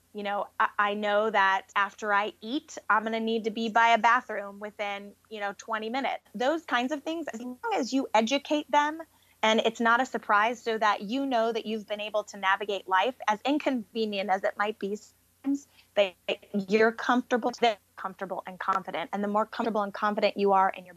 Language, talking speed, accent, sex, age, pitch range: English, 205 wpm, American, female, 20-39, 200-230 Hz